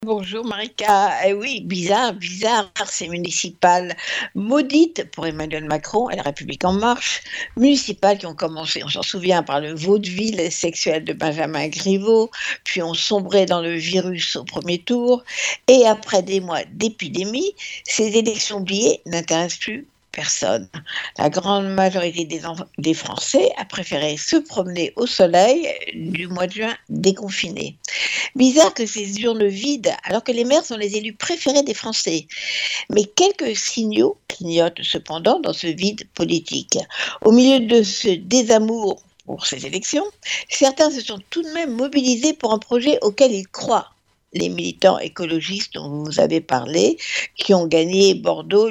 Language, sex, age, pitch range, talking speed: French, female, 60-79, 175-240 Hz, 155 wpm